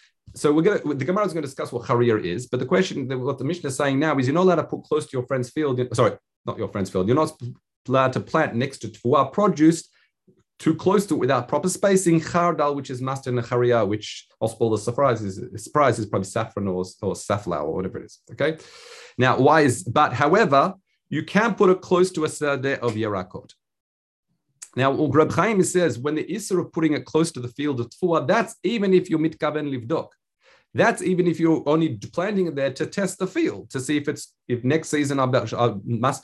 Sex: male